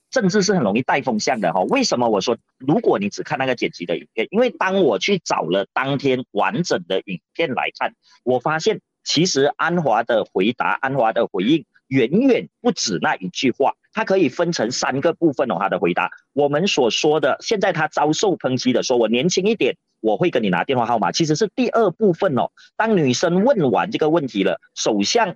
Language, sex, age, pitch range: Chinese, male, 40-59, 145-210 Hz